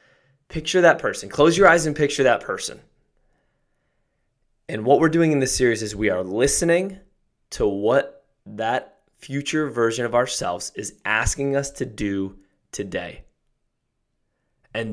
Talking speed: 140 wpm